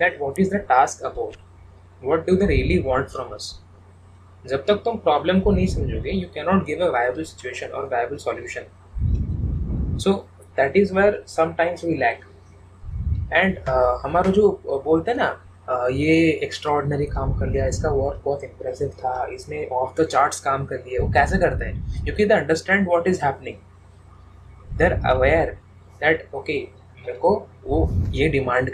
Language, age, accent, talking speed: English, 20-39, Indian, 130 wpm